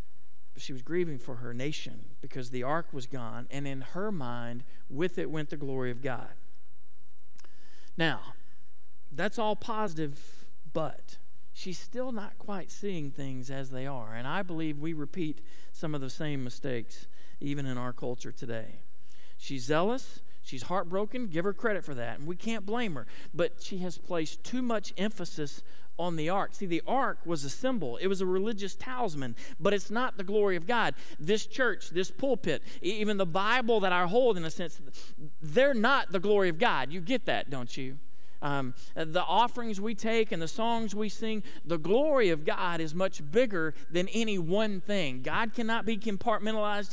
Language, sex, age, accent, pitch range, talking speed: English, male, 50-69, American, 145-215 Hz, 180 wpm